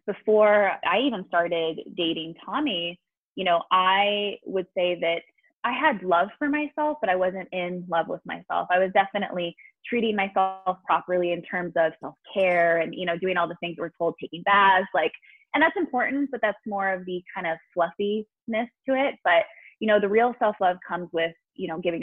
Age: 20-39